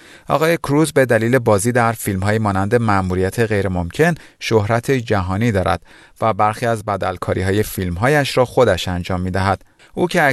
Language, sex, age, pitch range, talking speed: Persian, male, 40-59, 95-135 Hz, 140 wpm